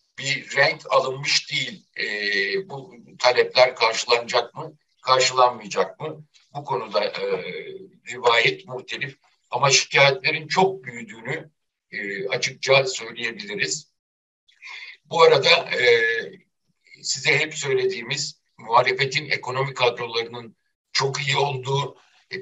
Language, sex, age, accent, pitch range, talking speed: Turkish, male, 60-79, native, 125-155 Hz, 95 wpm